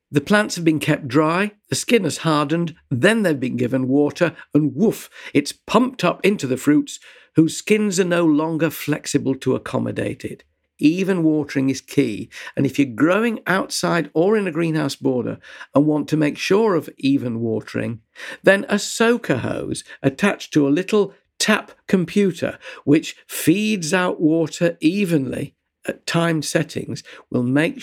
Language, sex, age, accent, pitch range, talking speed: English, male, 50-69, British, 135-195 Hz, 160 wpm